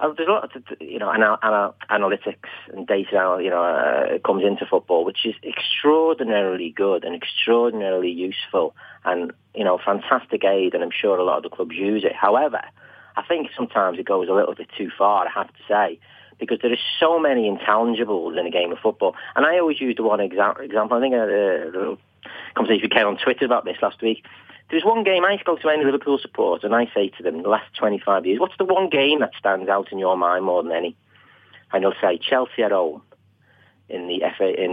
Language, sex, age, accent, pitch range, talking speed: English, male, 40-59, British, 100-165 Hz, 220 wpm